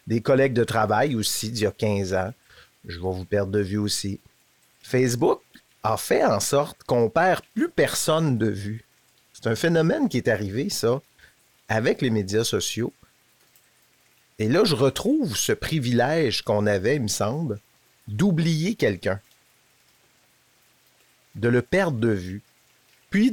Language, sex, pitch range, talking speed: French, male, 105-140 Hz, 150 wpm